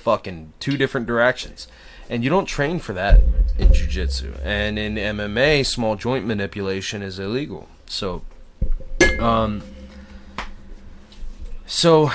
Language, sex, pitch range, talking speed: English, male, 95-120 Hz, 115 wpm